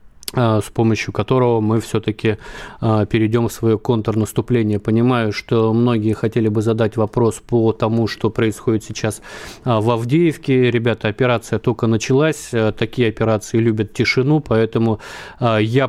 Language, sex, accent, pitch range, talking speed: Russian, male, native, 110-120 Hz, 125 wpm